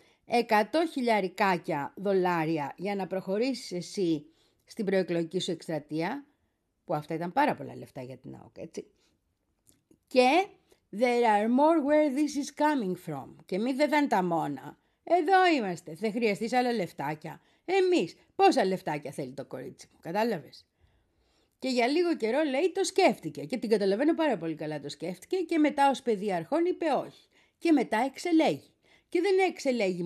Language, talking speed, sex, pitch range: Greek, 155 wpm, female, 170-280 Hz